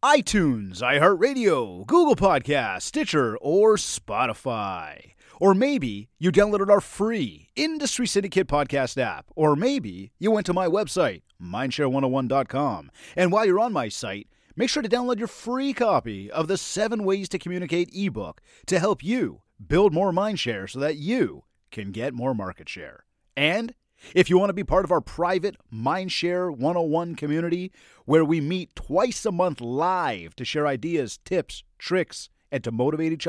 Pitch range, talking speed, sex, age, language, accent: 135-200 Hz, 160 wpm, male, 30-49, English, American